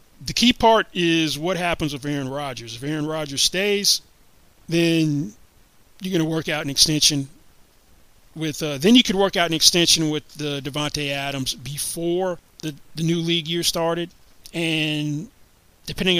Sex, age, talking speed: male, 30-49, 165 wpm